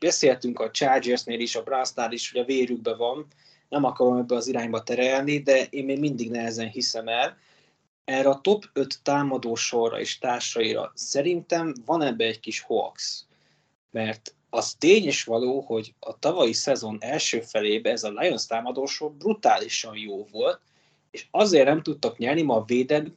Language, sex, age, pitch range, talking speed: Hungarian, male, 20-39, 120-155 Hz, 165 wpm